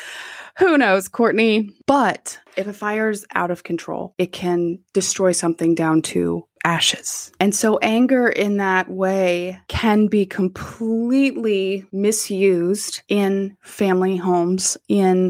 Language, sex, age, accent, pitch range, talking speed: English, female, 20-39, American, 175-215 Hz, 125 wpm